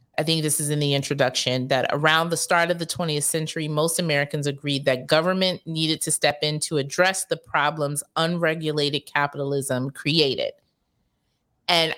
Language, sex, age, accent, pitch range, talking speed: English, female, 30-49, American, 145-185 Hz, 160 wpm